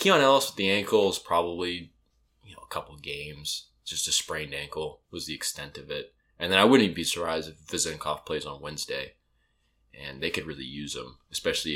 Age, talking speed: 20-39, 210 wpm